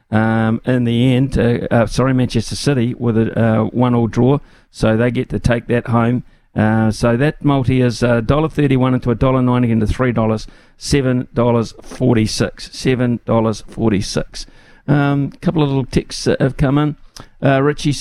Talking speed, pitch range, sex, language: 185 wpm, 115-140 Hz, male, English